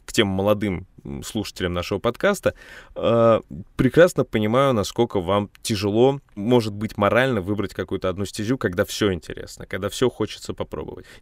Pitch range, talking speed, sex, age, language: 100-125 Hz, 140 wpm, male, 20-39, Russian